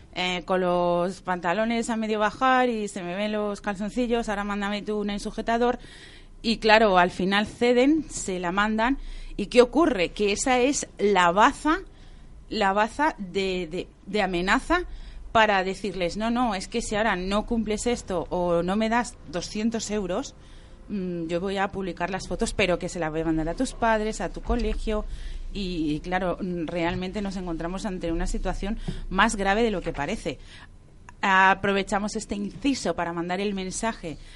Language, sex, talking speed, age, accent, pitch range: Spanish, female, 170 wpm, 30-49, Spanish, 175-225 Hz